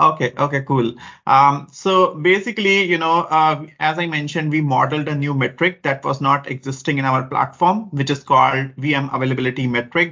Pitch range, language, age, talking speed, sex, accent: 135-160 Hz, English, 30-49, 180 wpm, male, Indian